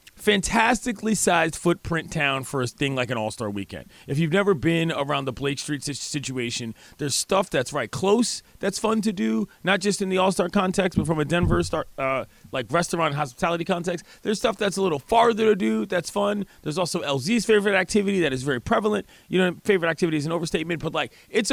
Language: English